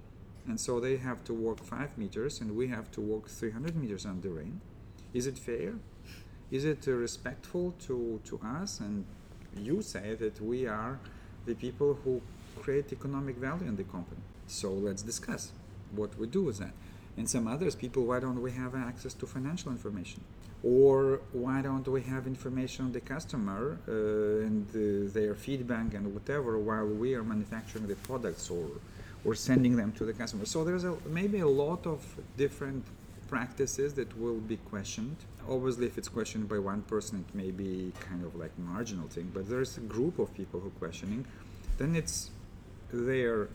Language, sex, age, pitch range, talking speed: English, male, 40-59, 100-130 Hz, 180 wpm